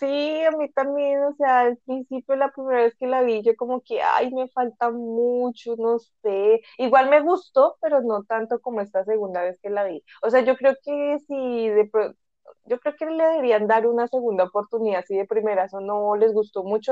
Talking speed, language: 215 wpm, Spanish